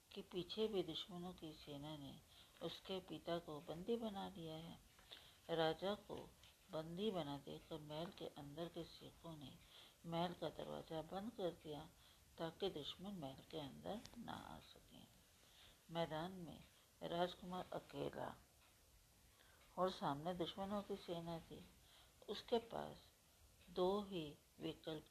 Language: Hindi